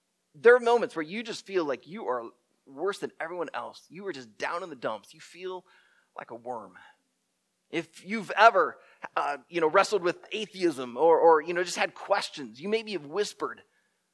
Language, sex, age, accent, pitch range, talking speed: English, male, 30-49, American, 175-240 Hz, 195 wpm